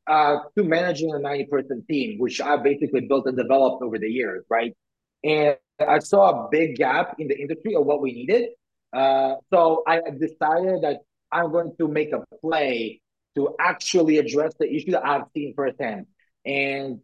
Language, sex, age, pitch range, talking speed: English, male, 30-49, 140-175 Hz, 175 wpm